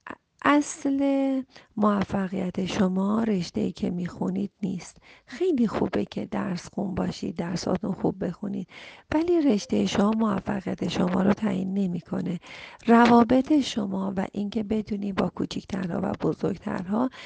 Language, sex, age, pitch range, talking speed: Persian, female, 40-59, 190-250 Hz, 120 wpm